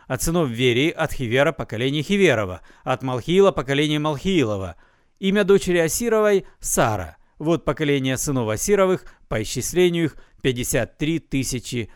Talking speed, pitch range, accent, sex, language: 135 wpm, 135-185 Hz, native, male, Russian